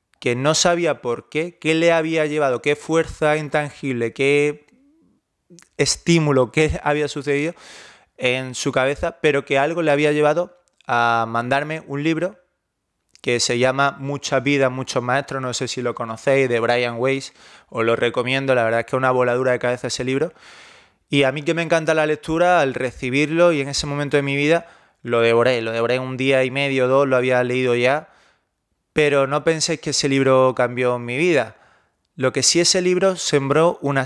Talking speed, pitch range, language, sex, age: 185 wpm, 125-145 Hz, Spanish, male, 20-39